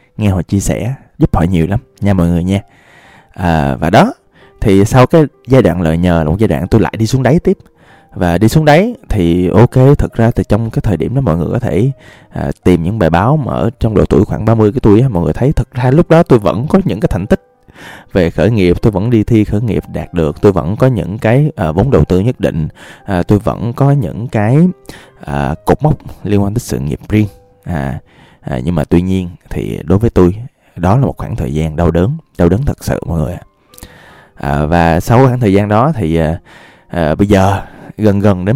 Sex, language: male, Vietnamese